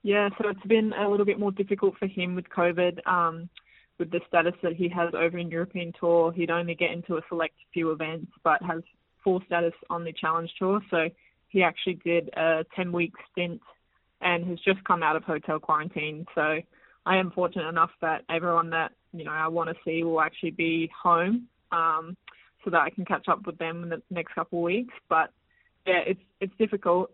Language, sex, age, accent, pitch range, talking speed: English, female, 20-39, Australian, 165-185 Hz, 205 wpm